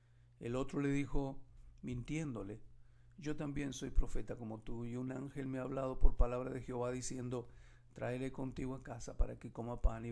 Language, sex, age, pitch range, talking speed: Spanish, male, 50-69, 120-135 Hz, 185 wpm